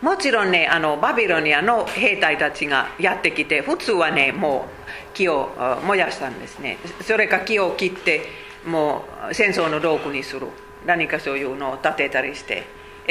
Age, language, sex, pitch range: 50-69, Japanese, female, 155-215 Hz